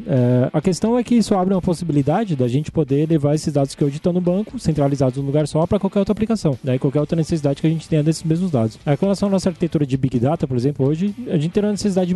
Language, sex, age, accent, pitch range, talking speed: Portuguese, male, 20-39, Brazilian, 140-185 Hz, 275 wpm